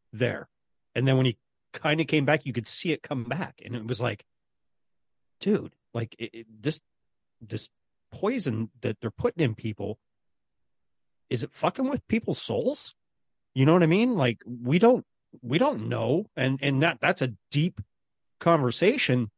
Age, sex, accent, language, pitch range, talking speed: 40-59, male, American, English, 120-155 Hz, 165 wpm